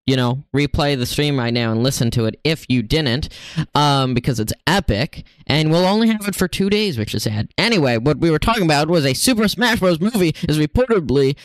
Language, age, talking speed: English, 10-29, 225 wpm